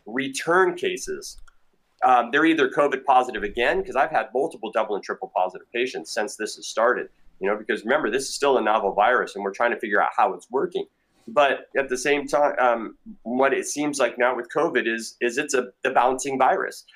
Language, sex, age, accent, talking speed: English, male, 30-49, American, 210 wpm